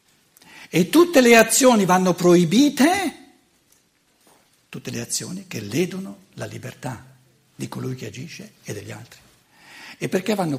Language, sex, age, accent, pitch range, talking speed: Italian, male, 60-79, native, 145-220 Hz, 130 wpm